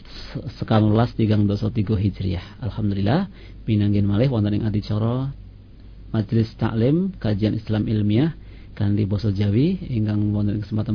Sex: male